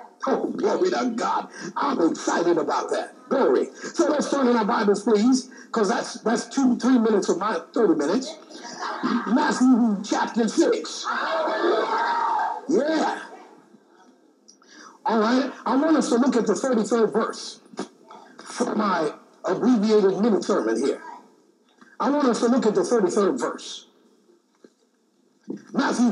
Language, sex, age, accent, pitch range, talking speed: English, male, 60-79, American, 230-305 Hz, 135 wpm